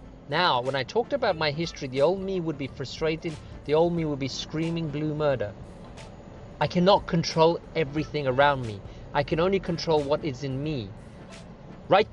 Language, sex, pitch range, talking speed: English, male, 135-175 Hz, 180 wpm